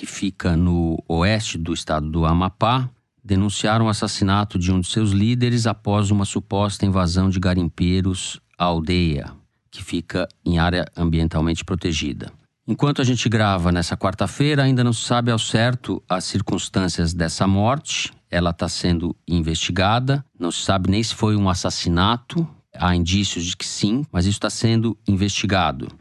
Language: Portuguese